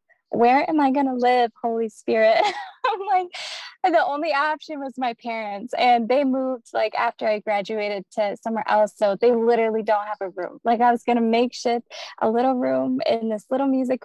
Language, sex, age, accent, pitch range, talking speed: English, female, 10-29, American, 220-255 Hz, 200 wpm